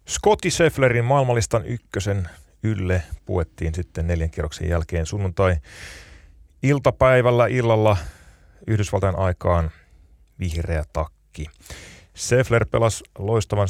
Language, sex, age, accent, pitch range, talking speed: Finnish, male, 30-49, native, 80-100 Hz, 85 wpm